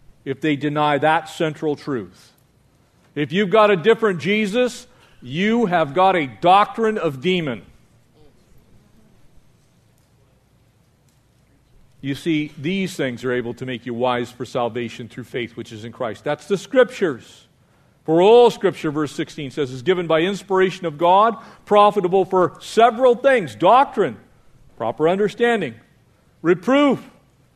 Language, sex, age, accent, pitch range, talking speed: English, male, 50-69, American, 135-200 Hz, 130 wpm